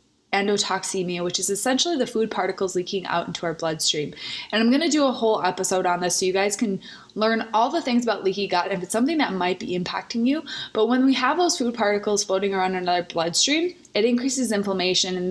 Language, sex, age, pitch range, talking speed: English, female, 20-39, 190-230 Hz, 220 wpm